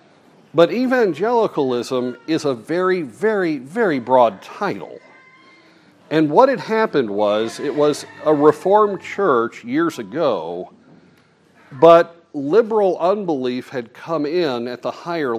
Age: 50-69